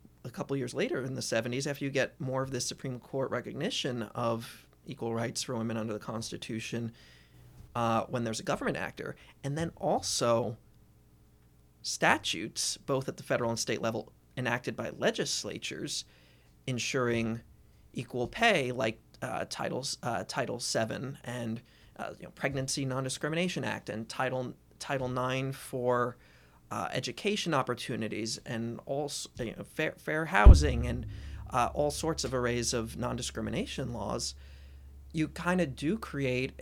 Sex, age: male, 30-49